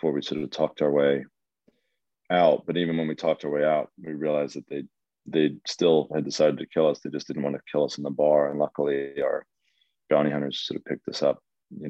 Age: 30-49